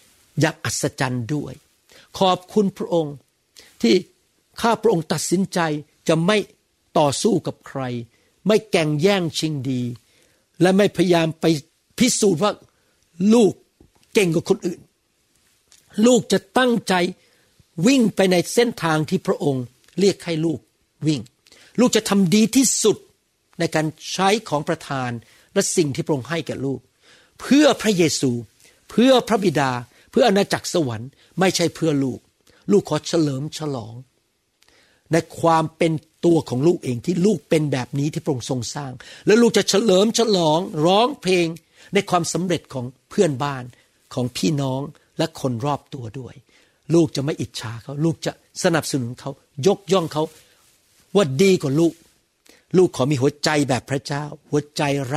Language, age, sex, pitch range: Thai, 60-79, male, 135-190 Hz